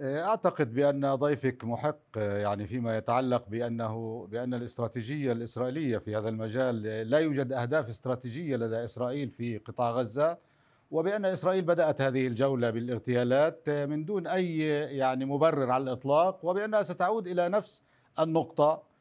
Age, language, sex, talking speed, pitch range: 50-69, Arabic, male, 130 wpm, 140-185 Hz